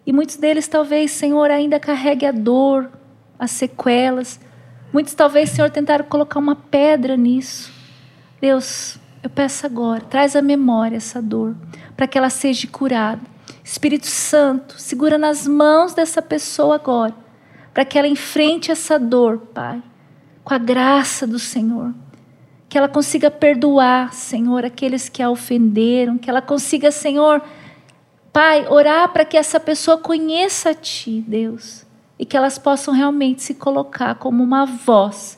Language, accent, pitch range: Portuguese, Brazilian, 240-295 Hz